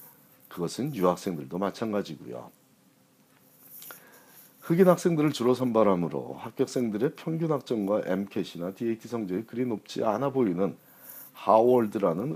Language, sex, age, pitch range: Korean, male, 40-59, 90-125 Hz